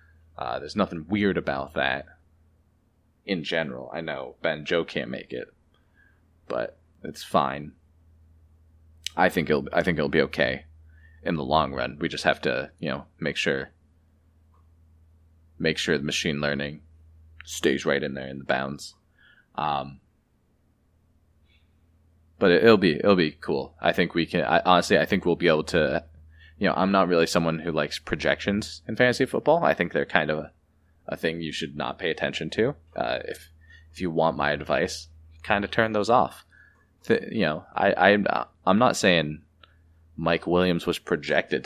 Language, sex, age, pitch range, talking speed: English, male, 20-39, 80-85 Hz, 175 wpm